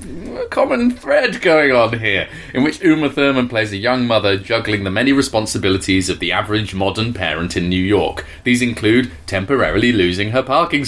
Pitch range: 100-135 Hz